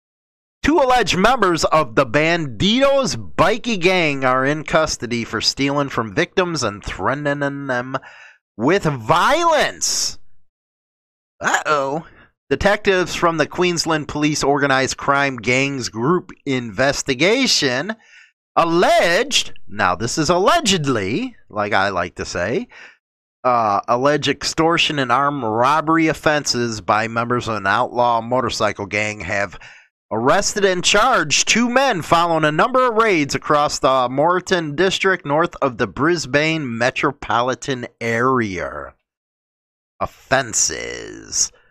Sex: male